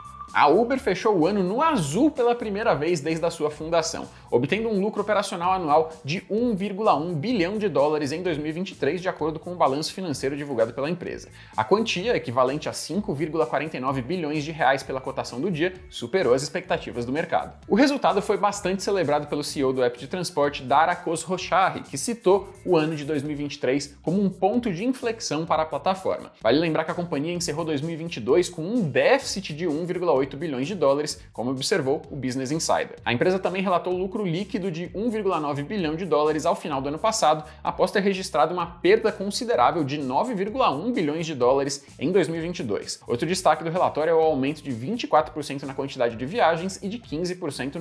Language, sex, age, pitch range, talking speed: Portuguese, male, 20-39, 150-195 Hz, 180 wpm